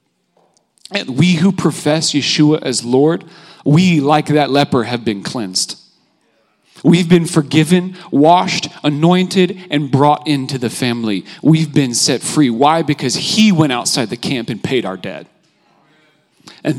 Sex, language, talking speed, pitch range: male, English, 145 wpm, 120-150 Hz